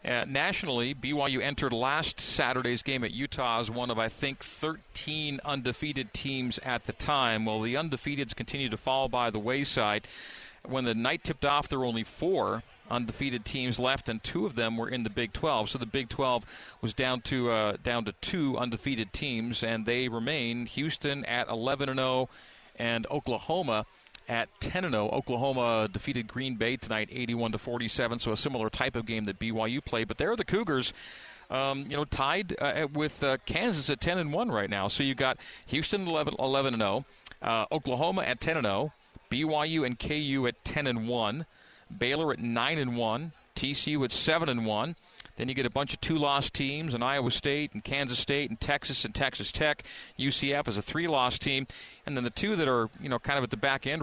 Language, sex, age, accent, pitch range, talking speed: English, male, 40-59, American, 115-140 Hz, 185 wpm